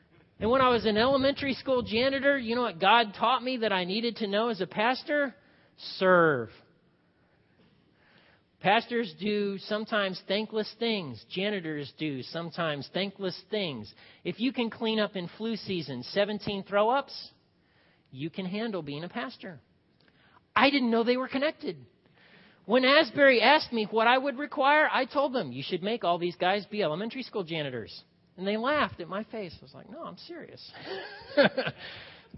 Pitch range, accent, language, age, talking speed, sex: 170-235 Hz, American, English, 40-59, 165 wpm, male